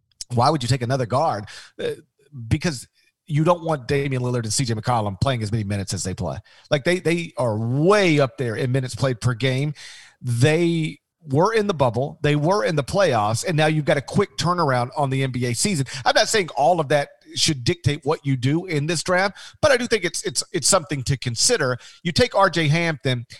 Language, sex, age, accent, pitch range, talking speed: English, male, 40-59, American, 125-170 Hz, 215 wpm